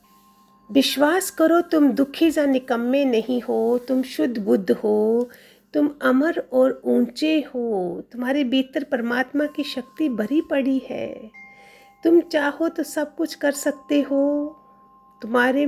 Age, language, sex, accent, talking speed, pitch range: 50-69, Hindi, female, native, 130 wpm, 230-285 Hz